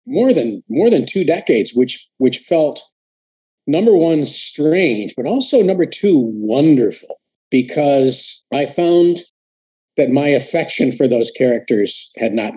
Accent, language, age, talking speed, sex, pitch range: American, English, 50-69, 135 wpm, male, 120-165 Hz